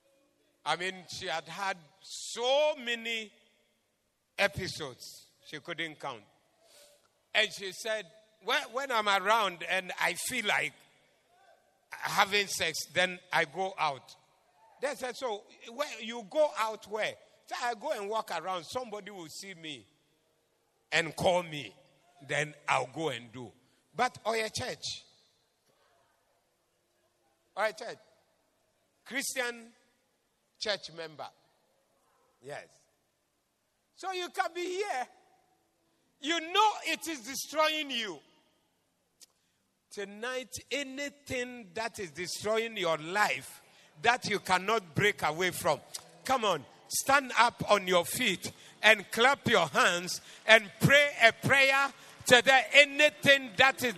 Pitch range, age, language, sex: 185-270 Hz, 60-79, English, male